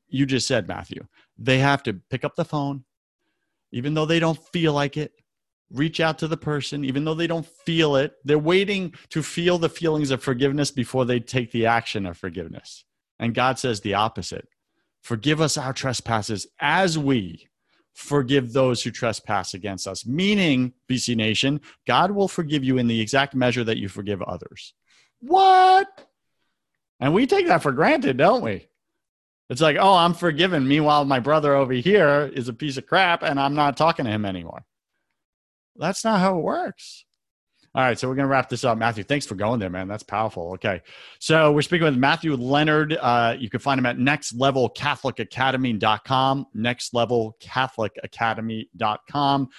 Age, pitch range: 40-59, 120-155 Hz